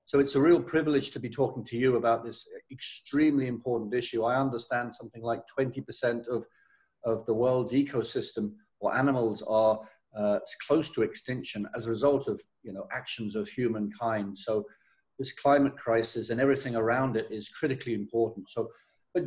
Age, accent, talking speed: 50-69, British, 170 wpm